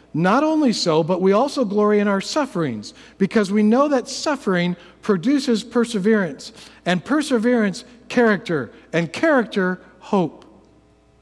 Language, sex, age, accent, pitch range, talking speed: English, male, 50-69, American, 185-265 Hz, 125 wpm